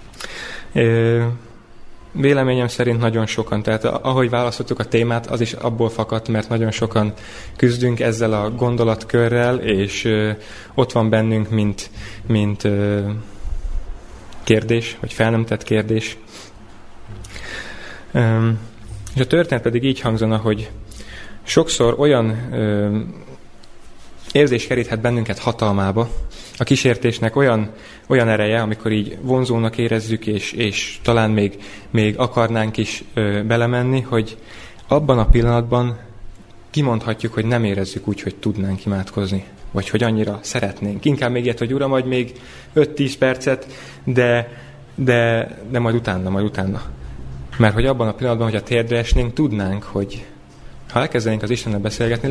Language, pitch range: Hungarian, 105-120 Hz